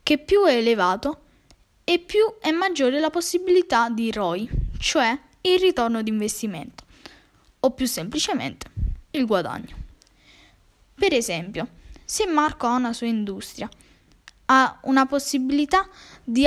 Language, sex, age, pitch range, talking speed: Italian, female, 10-29, 220-290 Hz, 125 wpm